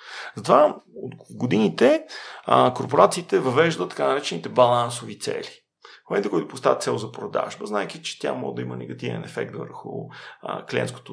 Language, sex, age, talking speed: Bulgarian, male, 40-59, 135 wpm